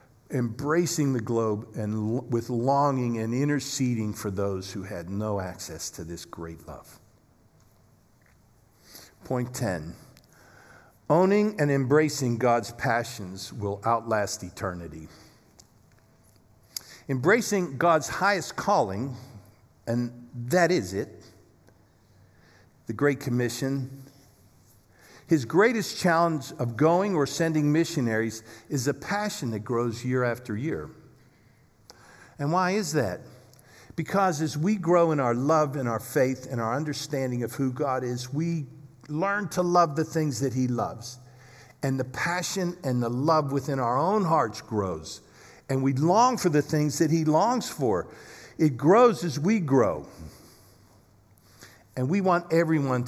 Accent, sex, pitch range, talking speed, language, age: American, male, 110-155 Hz, 130 wpm, English, 50-69